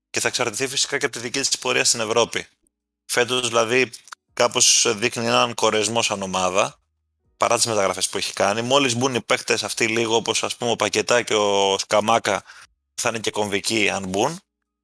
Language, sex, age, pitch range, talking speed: Greek, male, 20-39, 100-120 Hz, 180 wpm